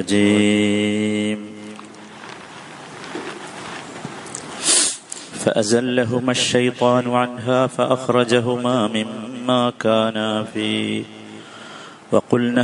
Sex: male